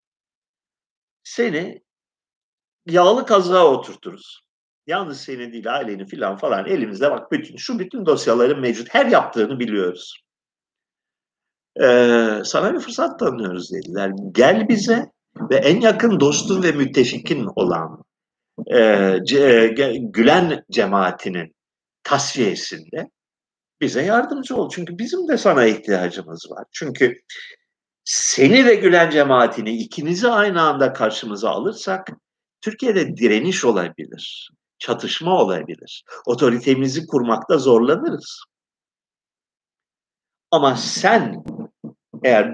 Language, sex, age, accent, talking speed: Turkish, male, 50-69, native, 95 wpm